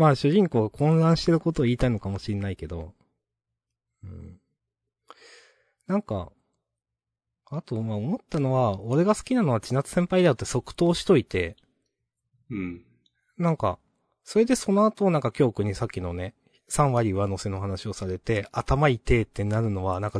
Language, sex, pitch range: Japanese, male, 100-135 Hz